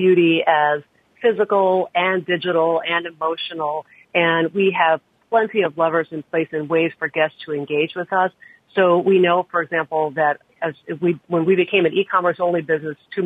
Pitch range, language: 155-185 Hz, English